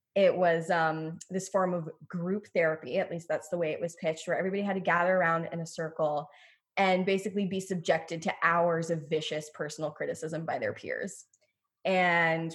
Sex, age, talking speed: female, 20-39, 185 wpm